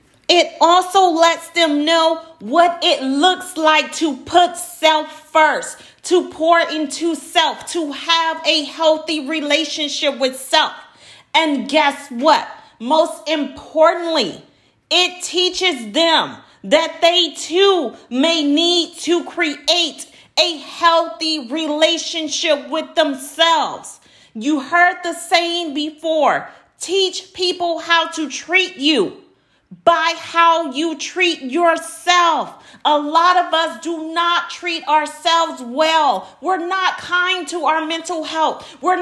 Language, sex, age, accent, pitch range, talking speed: English, female, 40-59, American, 305-340 Hz, 120 wpm